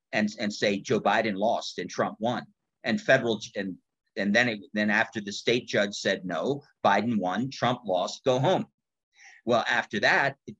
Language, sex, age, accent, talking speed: English, male, 50-69, American, 180 wpm